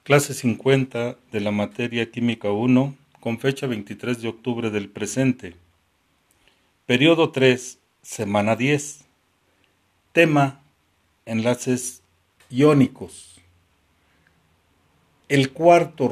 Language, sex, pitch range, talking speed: Spanish, male, 100-130 Hz, 85 wpm